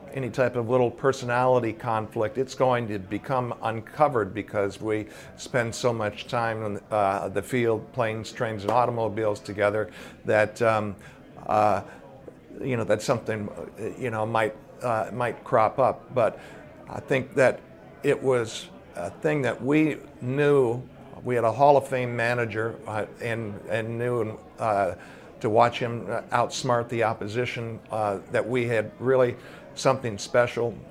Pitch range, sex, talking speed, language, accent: 110-125 Hz, male, 150 wpm, English, American